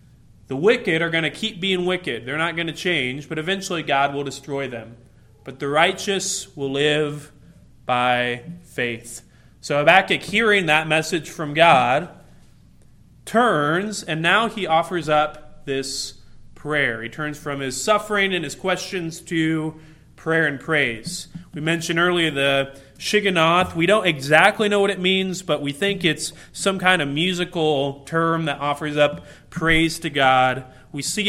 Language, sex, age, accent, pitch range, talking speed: English, male, 20-39, American, 140-175 Hz, 155 wpm